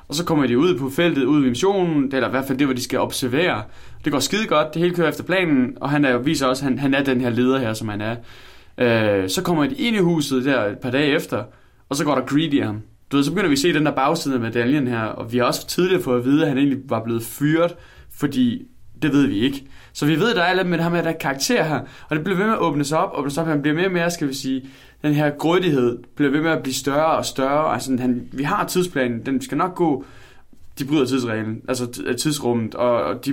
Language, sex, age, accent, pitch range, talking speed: Danish, male, 20-39, native, 125-155 Hz, 280 wpm